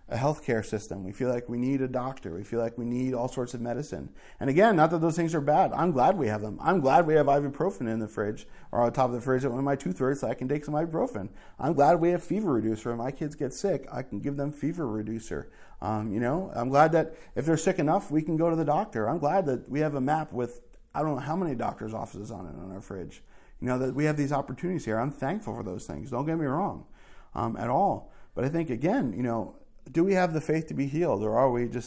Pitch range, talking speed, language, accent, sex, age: 115-150 Hz, 280 wpm, English, American, male, 40-59